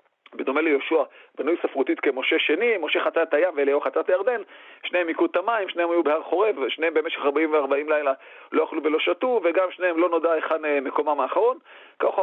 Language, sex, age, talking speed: Hebrew, male, 40-59, 175 wpm